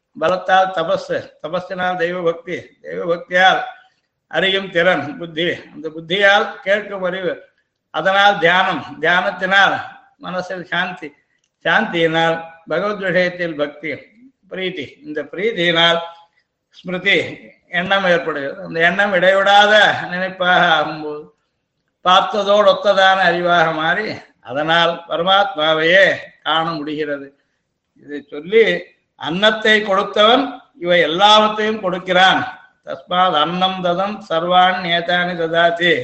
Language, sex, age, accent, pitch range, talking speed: Tamil, male, 60-79, native, 165-195 Hz, 85 wpm